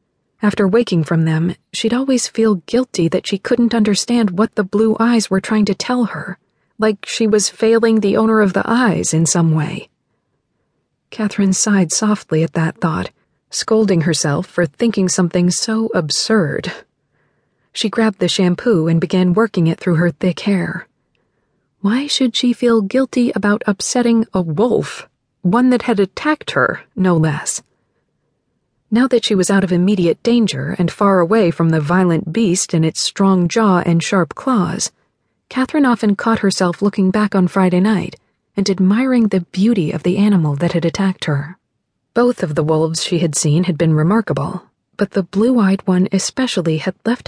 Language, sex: English, female